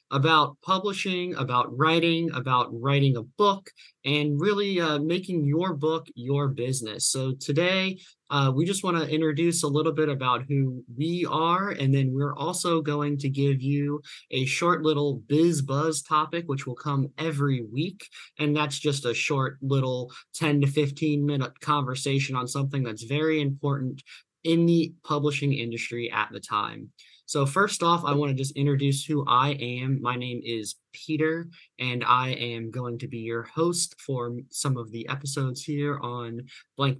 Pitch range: 125-155 Hz